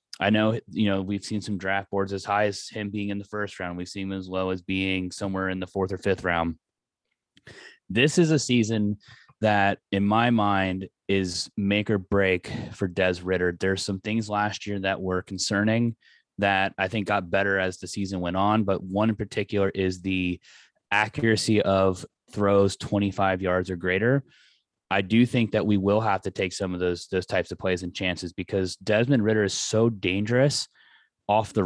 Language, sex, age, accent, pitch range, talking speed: English, male, 20-39, American, 95-110 Hz, 195 wpm